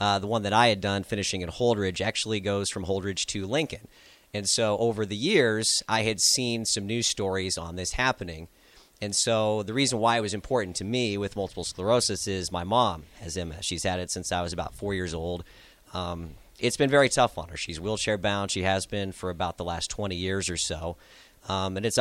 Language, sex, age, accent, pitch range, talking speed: English, male, 40-59, American, 95-110 Hz, 225 wpm